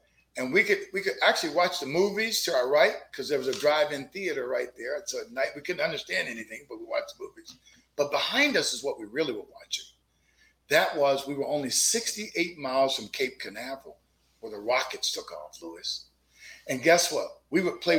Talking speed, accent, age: 210 wpm, American, 50-69